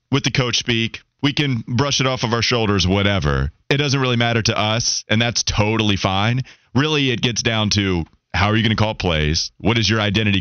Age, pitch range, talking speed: 30-49, 100-135 Hz, 225 wpm